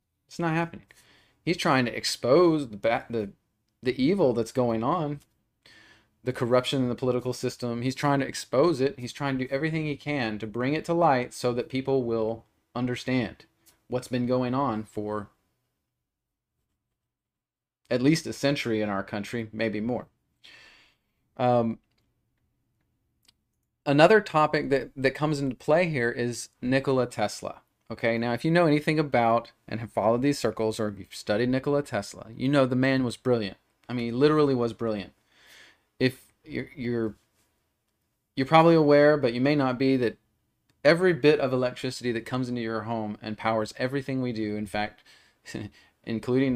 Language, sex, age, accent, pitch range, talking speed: English, male, 30-49, American, 110-135 Hz, 160 wpm